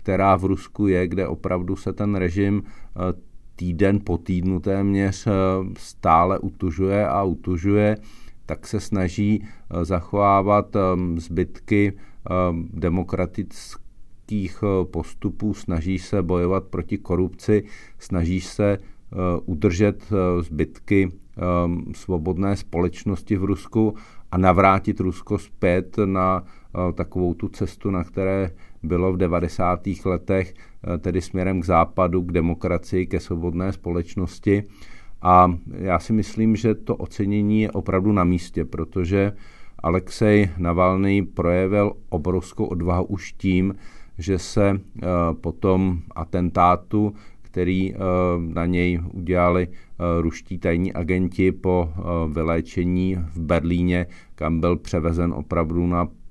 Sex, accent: male, native